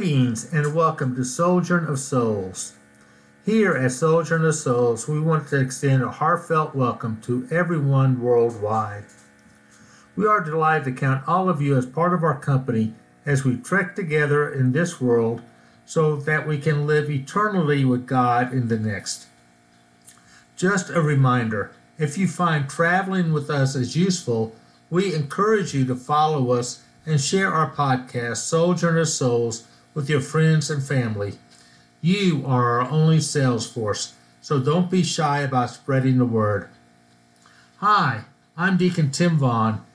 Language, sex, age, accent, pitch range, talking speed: English, male, 50-69, American, 125-165 Hz, 150 wpm